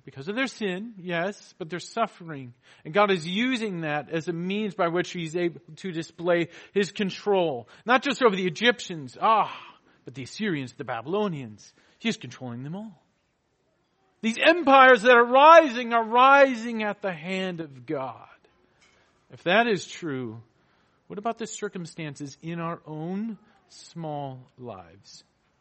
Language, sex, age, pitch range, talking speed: English, male, 40-59, 155-215 Hz, 150 wpm